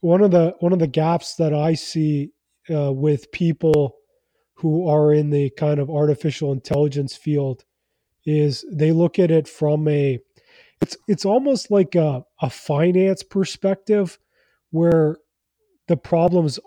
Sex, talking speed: male, 145 wpm